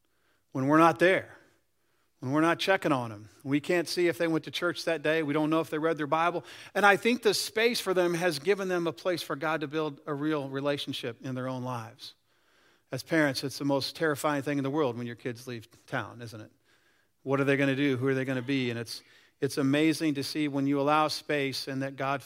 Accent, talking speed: American, 250 wpm